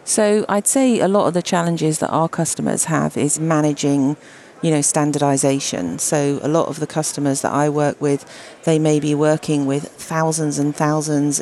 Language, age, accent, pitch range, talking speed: English, 40-59, British, 140-155 Hz, 185 wpm